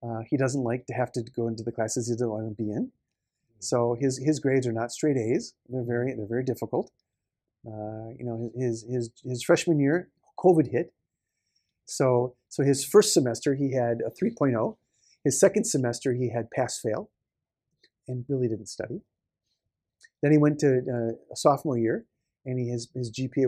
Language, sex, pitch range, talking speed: English, male, 115-135 Hz, 185 wpm